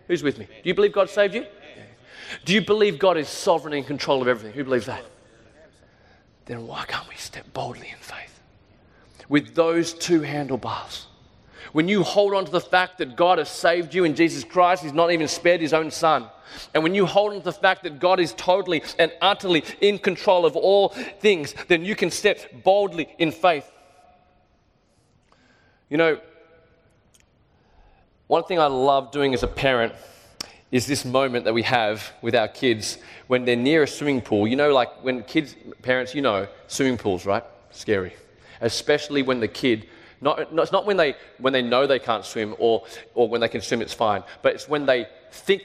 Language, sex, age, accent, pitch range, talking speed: English, male, 30-49, Australian, 120-175 Hz, 195 wpm